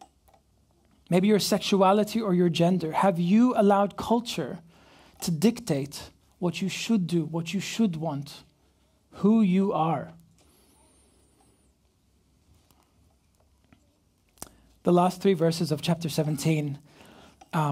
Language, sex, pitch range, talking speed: English, male, 135-175 Hz, 100 wpm